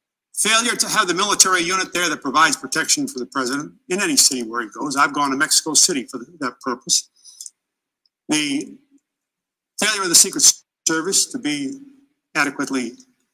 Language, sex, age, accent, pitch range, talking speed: English, male, 50-69, American, 165-275 Hz, 160 wpm